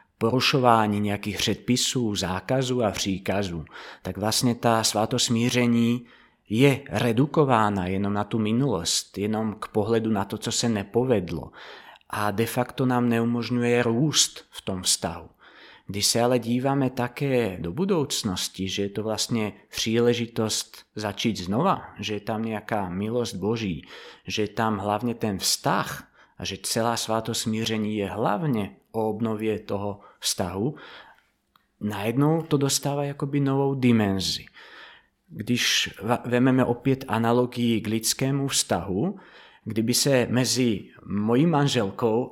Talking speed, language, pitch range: 125 wpm, Czech, 105-125 Hz